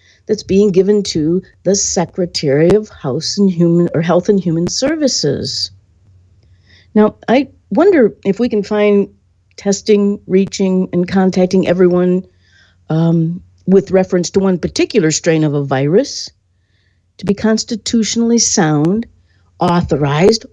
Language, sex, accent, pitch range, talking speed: English, female, American, 165-230 Hz, 125 wpm